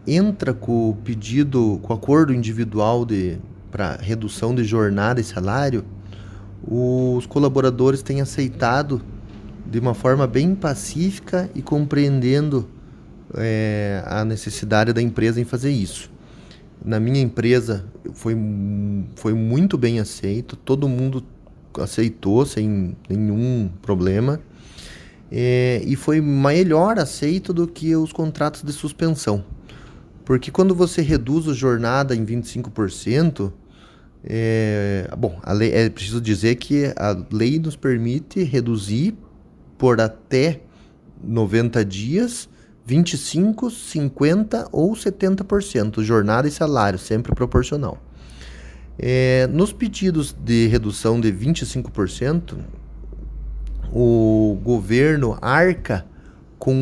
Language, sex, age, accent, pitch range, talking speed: Portuguese, male, 20-39, Brazilian, 105-145 Hz, 110 wpm